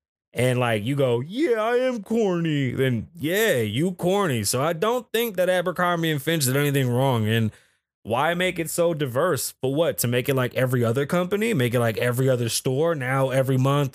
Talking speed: 200 wpm